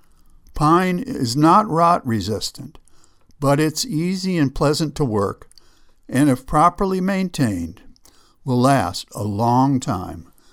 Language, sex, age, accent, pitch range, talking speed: English, male, 60-79, American, 120-155 Hz, 120 wpm